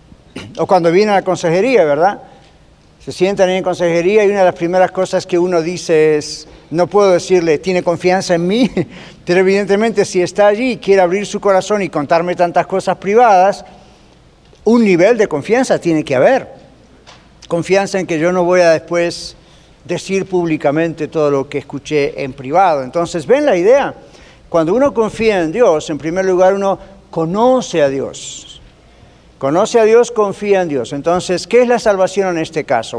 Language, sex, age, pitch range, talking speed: Spanish, male, 50-69, 165-200 Hz, 175 wpm